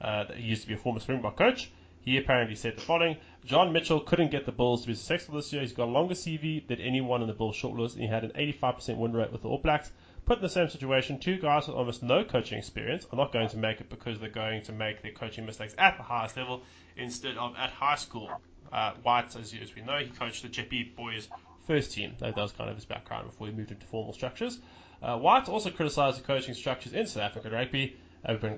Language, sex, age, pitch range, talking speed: English, male, 20-39, 110-140 Hz, 250 wpm